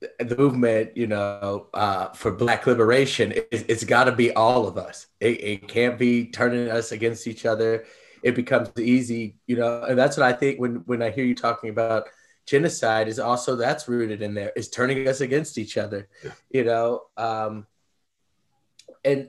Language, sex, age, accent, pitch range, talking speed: English, male, 30-49, American, 120-155 Hz, 180 wpm